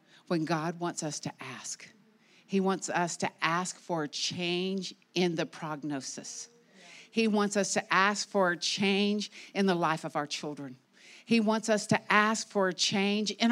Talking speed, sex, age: 180 wpm, female, 50-69